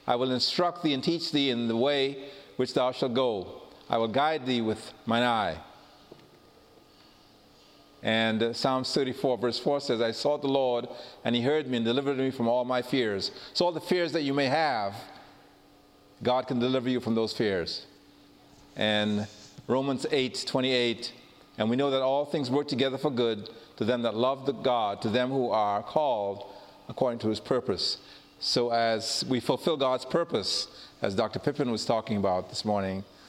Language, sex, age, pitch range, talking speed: English, male, 40-59, 115-140 Hz, 180 wpm